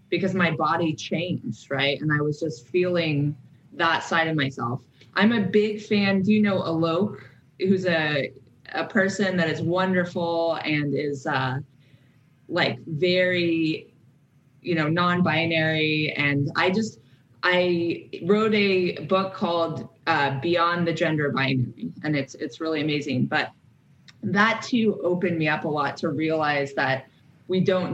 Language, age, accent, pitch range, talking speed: English, 20-39, American, 145-185 Hz, 145 wpm